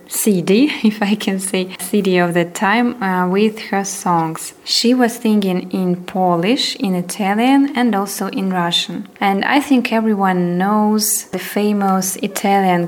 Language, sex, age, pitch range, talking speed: English, female, 20-39, 190-225 Hz, 150 wpm